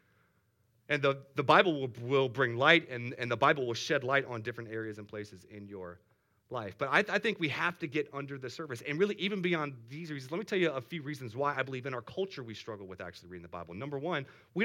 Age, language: 30-49, English